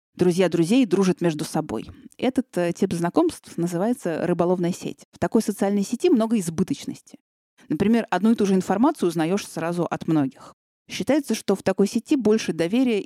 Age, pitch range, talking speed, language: 30-49, 165-225 Hz, 155 wpm, Russian